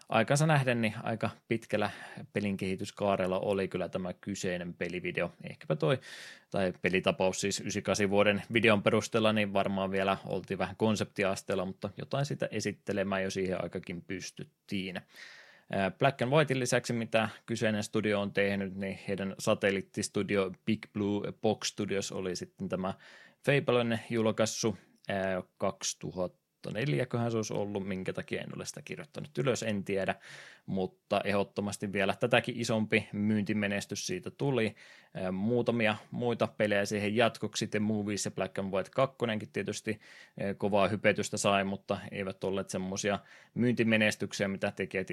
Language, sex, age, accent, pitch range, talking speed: Finnish, male, 20-39, native, 95-110 Hz, 135 wpm